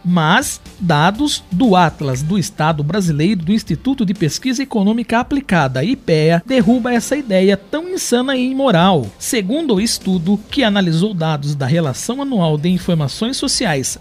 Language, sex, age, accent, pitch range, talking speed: Portuguese, male, 50-69, Brazilian, 180-245 Hz, 140 wpm